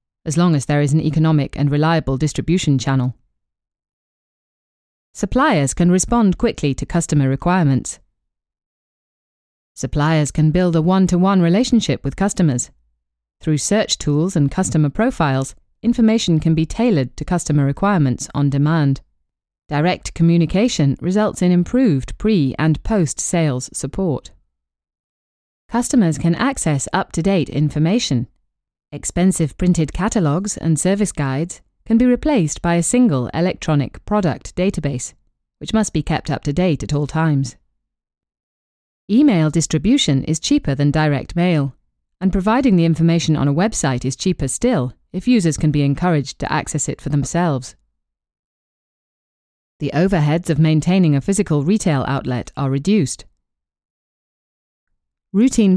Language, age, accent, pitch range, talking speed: English, 30-49, British, 135-185 Hz, 130 wpm